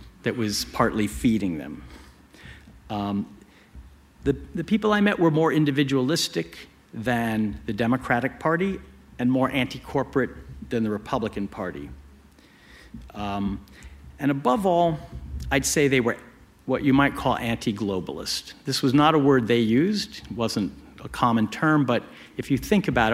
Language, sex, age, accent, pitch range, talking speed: English, male, 50-69, American, 100-135 Hz, 140 wpm